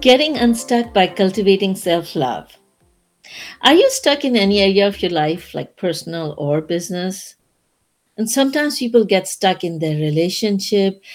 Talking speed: 140 wpm